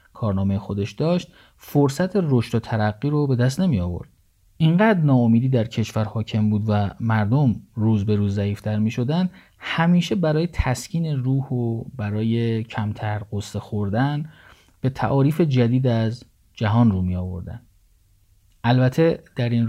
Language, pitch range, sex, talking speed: Persian, 105-140 Hz, male, 135 wpm